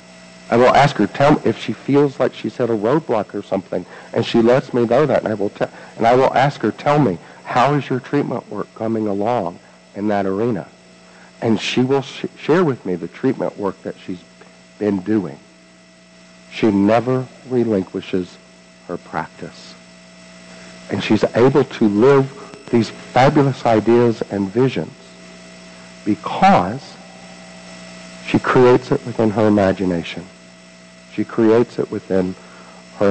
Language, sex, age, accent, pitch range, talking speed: English, male, 50-69, American, 95-120 Hz, 145 wpm